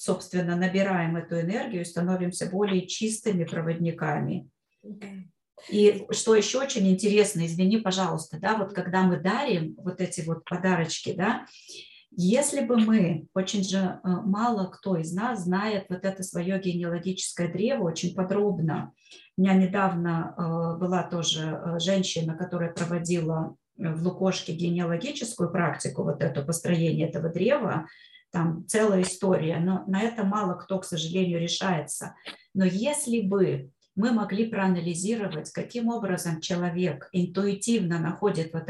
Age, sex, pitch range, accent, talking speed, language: 30-49, female, 170-200 Hz, native, 125 wpm, Russian